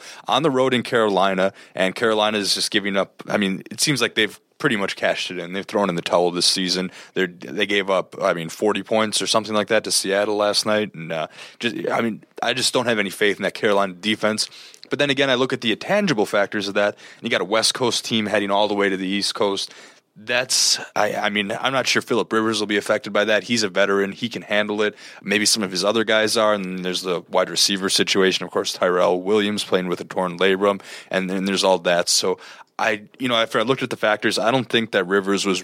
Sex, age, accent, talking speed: male, 20-39, American, 255 wpm